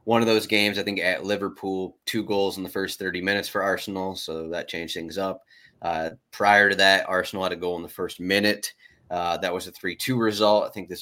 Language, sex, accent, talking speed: English, male, American, 235 wpm